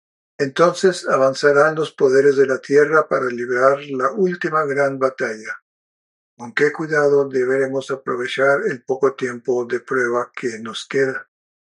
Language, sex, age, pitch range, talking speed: Spanish, male, 50-69, 135-160 Hz, 130 wpm